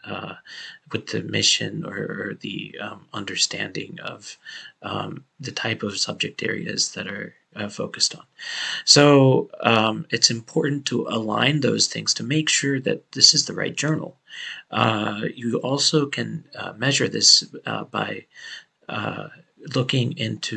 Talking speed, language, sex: 145 wpm, English, male